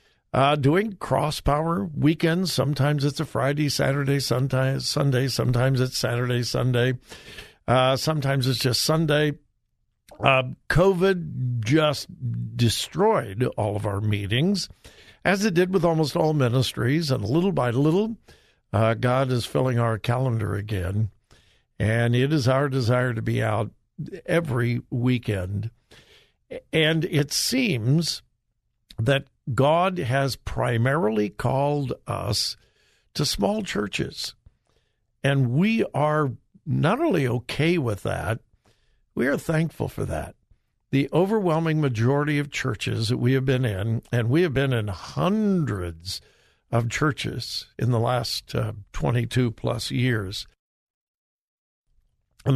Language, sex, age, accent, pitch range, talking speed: English, male, 60-79, American, 115-150 Hz, 120 wpm